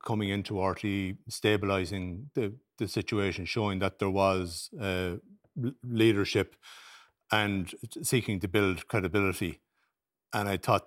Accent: Irish